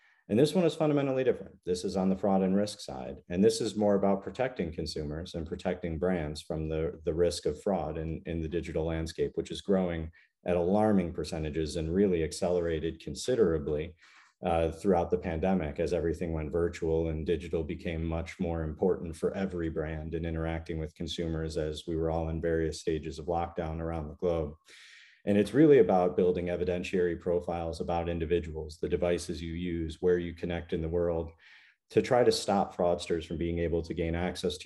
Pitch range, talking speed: 80-90 Hz, 190 wpm